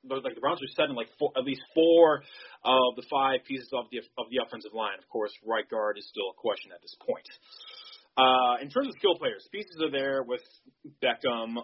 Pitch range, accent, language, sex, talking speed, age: 125-170 Hz, American, English, male, 210 wpm, 30-49